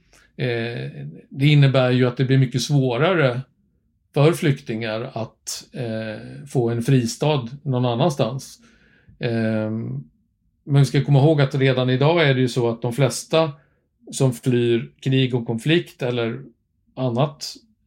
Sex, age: male, 50-69